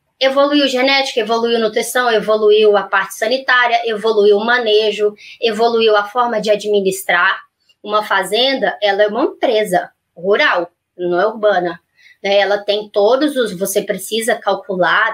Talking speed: 130 wpm